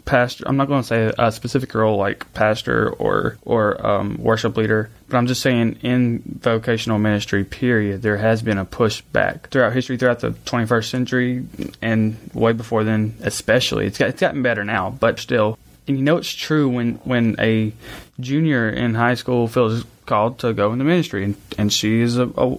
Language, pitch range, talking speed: English, 110-135 Hz, 195 wpm